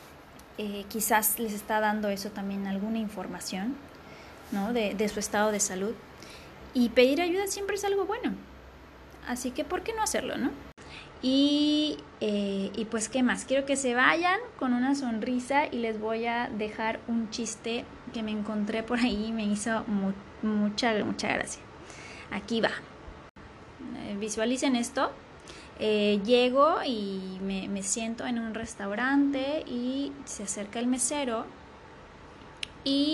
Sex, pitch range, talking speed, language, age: female, 215-280 Hz, 150 wpm, Spanish, 20-39